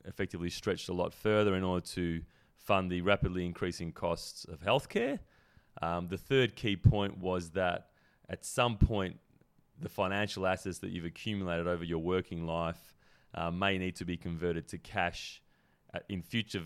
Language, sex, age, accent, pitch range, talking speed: English, male, 30-49, Australian, 85-95 Hz, 165 wpm